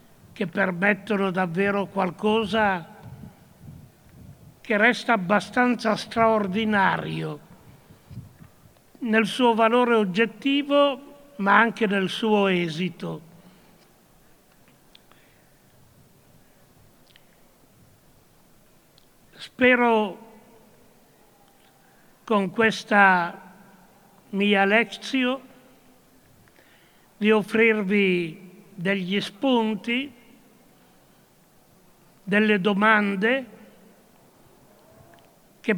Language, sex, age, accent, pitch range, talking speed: Italian, male, 60-79, native, 195-225 Hz, 50 wpm